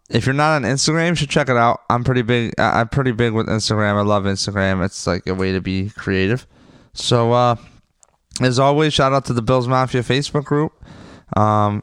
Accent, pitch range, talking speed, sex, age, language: American, 105-130 Hz, 210 wpm, male, 20-39, English